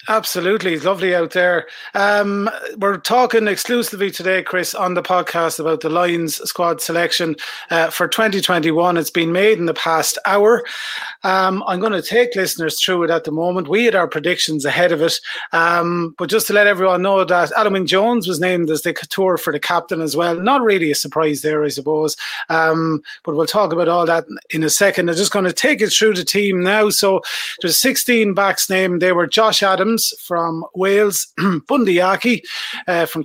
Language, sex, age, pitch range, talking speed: English, male, 30-49, 170-210 Hz, 195 wpm